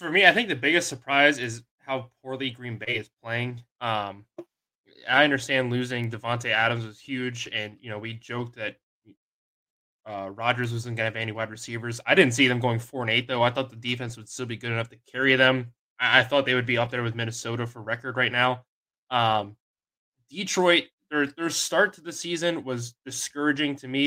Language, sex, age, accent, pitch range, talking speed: English, male, 20-39, American, 115-135 Hz, 205 wpm